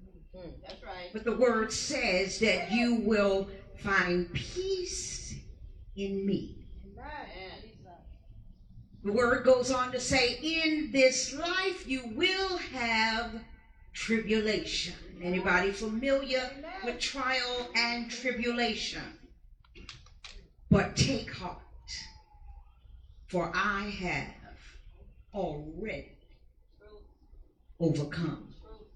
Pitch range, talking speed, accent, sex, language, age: 175-270 Hz, 80 wpm, American, female, English, 50-69